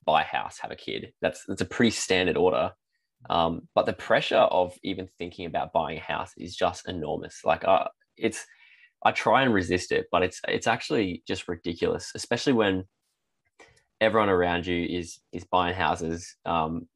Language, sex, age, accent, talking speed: English, male, 20-39, Australian, 175 wpm